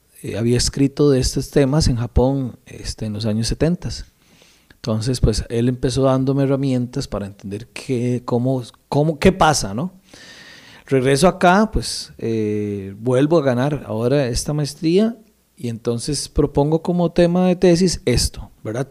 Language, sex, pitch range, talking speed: Spanish, male, 125-170 Hz, 145 wpm